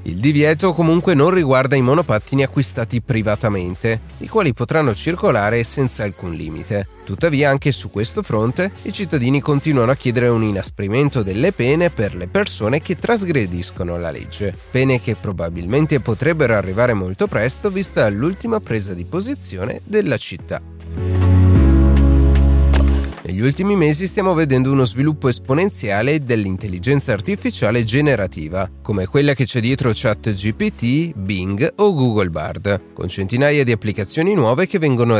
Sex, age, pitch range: male, 30-49, 100-150 Hz